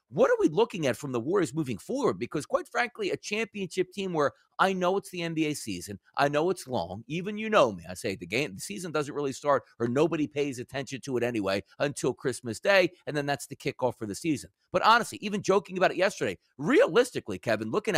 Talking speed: 225 wpm